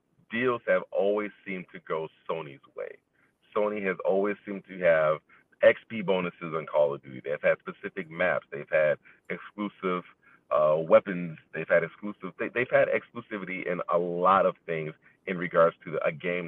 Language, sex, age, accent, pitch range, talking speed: English, male, 40-59, American, 85-105 Hz, 170 wpm